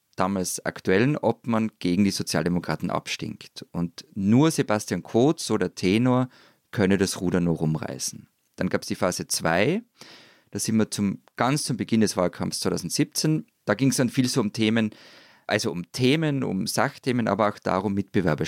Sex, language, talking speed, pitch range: male, German, 165 wpm, 90-120 Hz